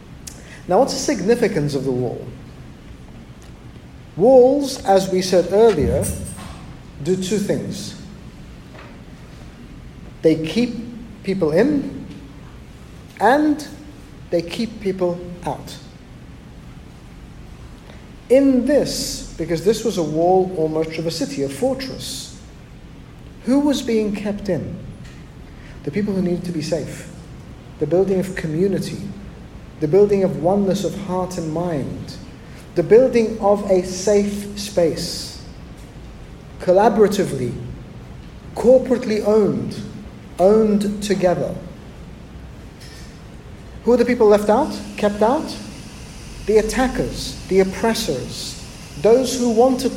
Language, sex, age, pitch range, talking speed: English, male, 50-69, 170-230 Hz, 105 wpm